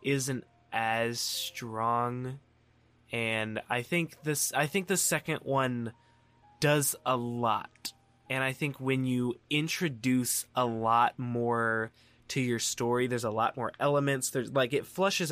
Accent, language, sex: American, English, male